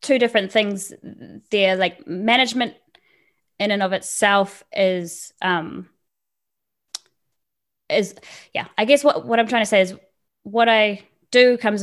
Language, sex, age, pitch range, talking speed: English, female, 20-39, 180-210 Hz, 135 wpm